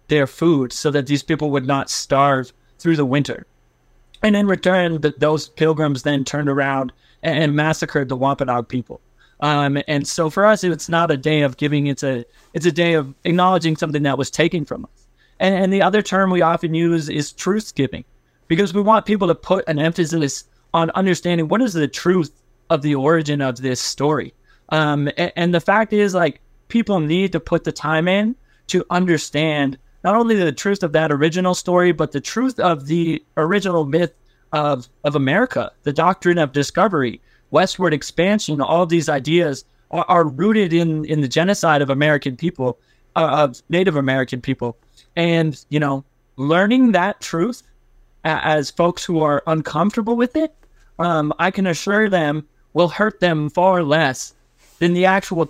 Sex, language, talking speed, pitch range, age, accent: male, English, 185 wpm, 145-180 Hz, 20-39, American